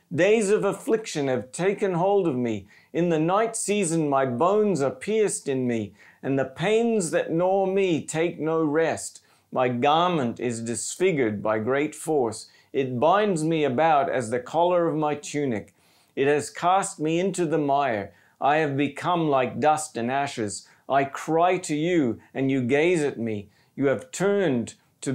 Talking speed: 170 wpm